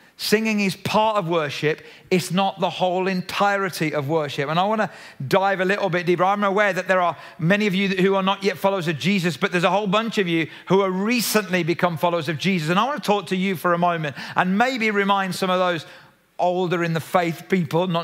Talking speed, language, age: 240 wpm, English, 40-59